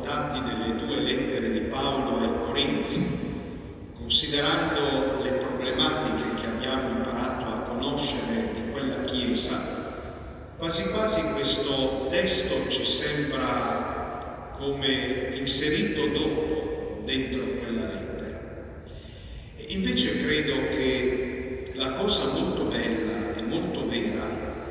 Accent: native